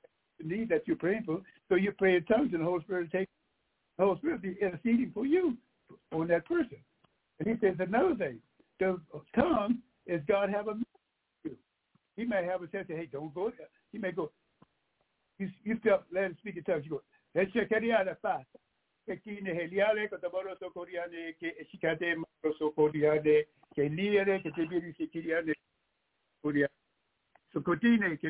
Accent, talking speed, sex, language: American, 130 wpm, male, English